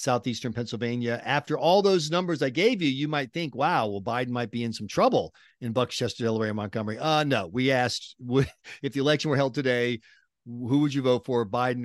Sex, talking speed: male, 215 wpm